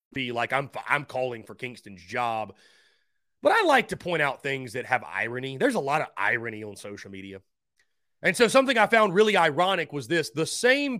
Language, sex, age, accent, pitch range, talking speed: English, male, 30-49, American, 140-225 Hz, 200 wpm